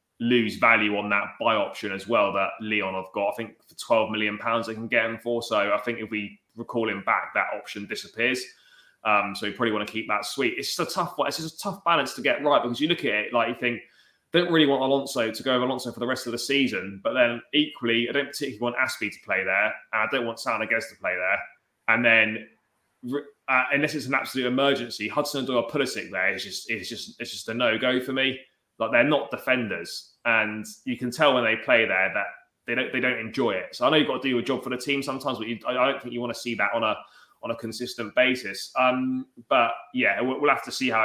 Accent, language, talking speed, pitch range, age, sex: British, English, 255 wpm, 115-135 Hz, 20-39, male